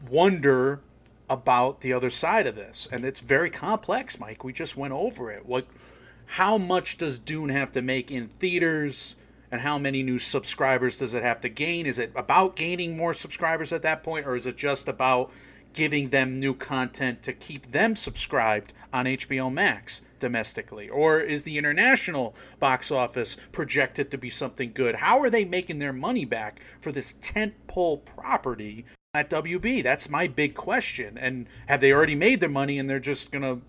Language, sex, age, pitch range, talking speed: English, male, 30-49, 130-150 Hz, 180 wpm